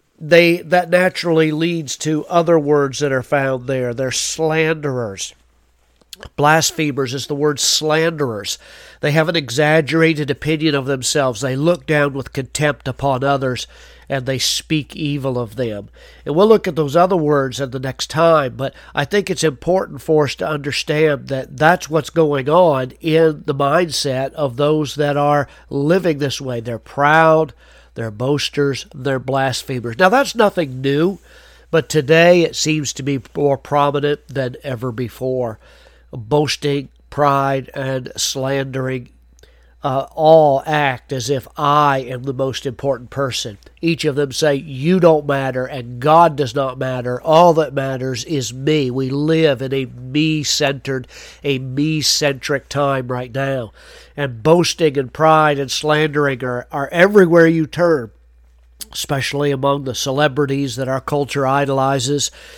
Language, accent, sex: English, American, male